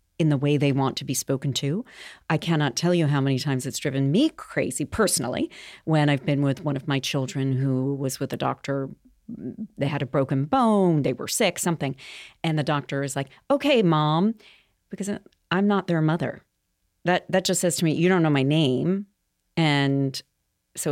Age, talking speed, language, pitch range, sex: 40-59, 195 wpm, English, 140-175 Hz, female